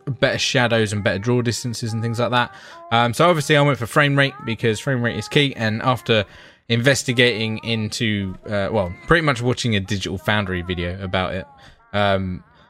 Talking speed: 185 wpm